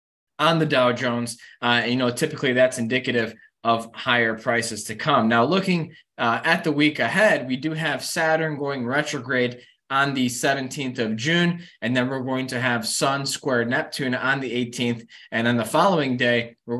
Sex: male